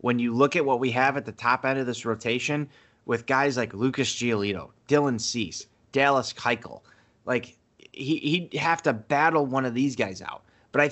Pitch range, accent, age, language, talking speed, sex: 120-155 Hz, American, 30-49, English, 185 wpm, male